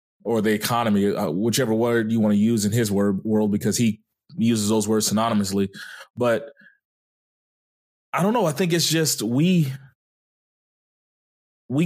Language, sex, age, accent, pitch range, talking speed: English, male, 20-39, American, 115-155 Hz, 145 wpm